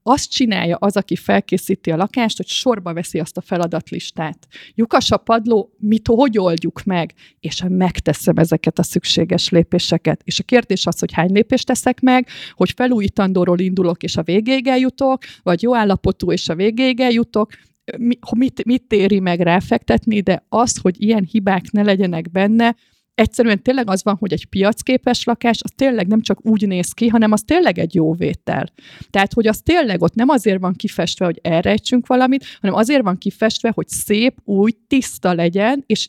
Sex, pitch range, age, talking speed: female, 180-235 Hz, 30-49, 175 wpm